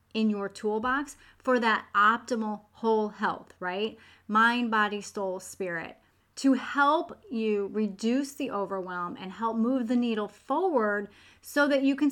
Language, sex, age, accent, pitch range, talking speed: English, female, 30-49, American, 205-255 Hz, 145 wpm